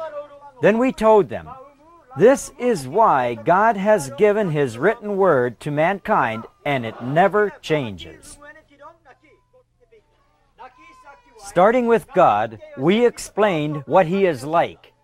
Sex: male